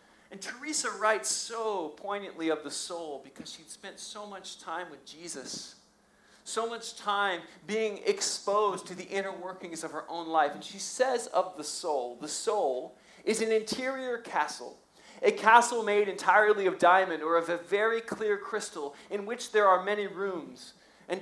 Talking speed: 170 wpm